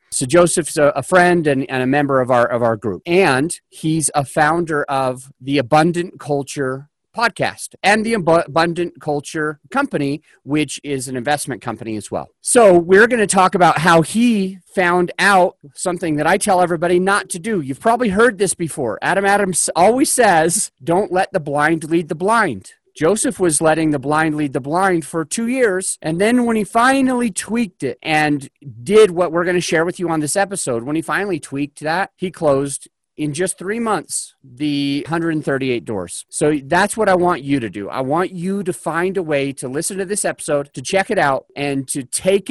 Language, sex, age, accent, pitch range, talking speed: English, male, 40-59, American, 145-190 Hz, 195 wpm